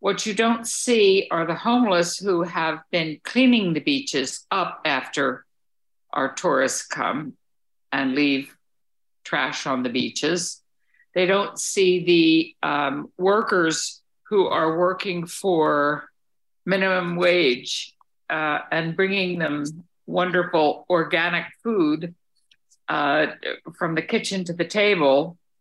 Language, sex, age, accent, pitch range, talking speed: English, female, 60-79, American, 160-205 Hz, 115 wpm